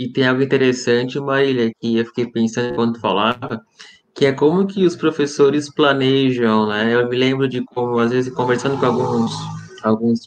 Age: 20-39